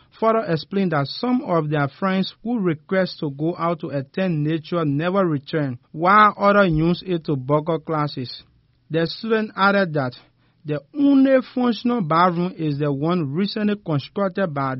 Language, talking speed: English, 155 wpm